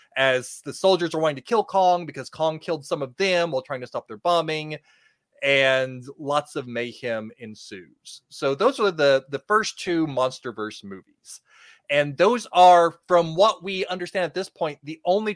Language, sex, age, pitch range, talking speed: English, male, 30-49, 125-165 Hz, 180 wpm